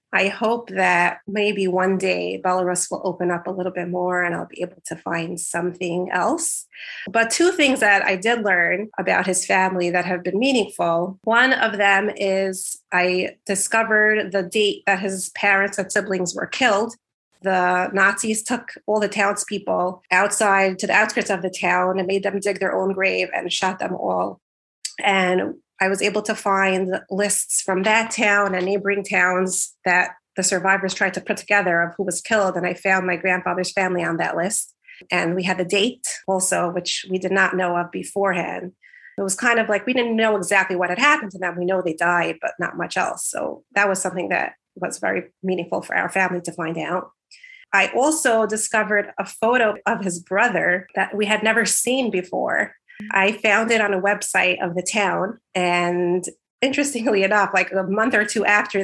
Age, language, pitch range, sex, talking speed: 30-49, English, 185-210 Hz, female, 195 wpm